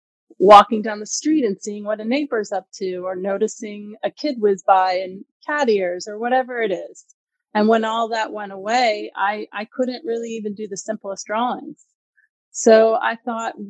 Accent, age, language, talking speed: American, 30-49, English, 185 wpm